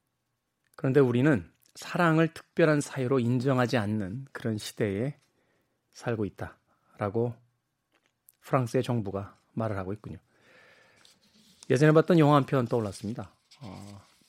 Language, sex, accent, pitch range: Korean, male, native, 115-150 Hz